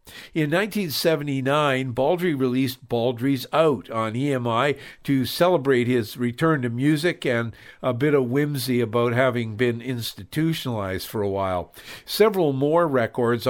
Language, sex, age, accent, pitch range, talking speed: English, male, 50-69, American, 120-150 Hz, 130 wpm